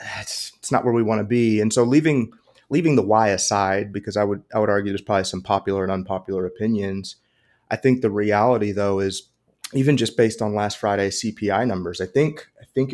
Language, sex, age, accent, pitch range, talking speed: English, male, 30-49, American, 100-125 Hz, 215 wpm